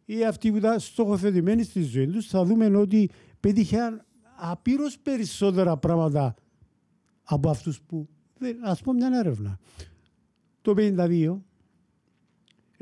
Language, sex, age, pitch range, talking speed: Greek, male, 50-69, 135-195 Hz, 110 wpm